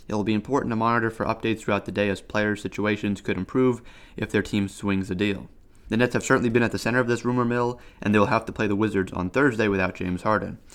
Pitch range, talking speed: 95-110 Hz, 265 wpm